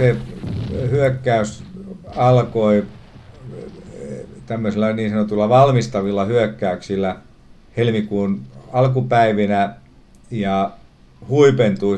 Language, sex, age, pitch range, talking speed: Finnish, male, 50-69, 95-120 Hz, 60 wpm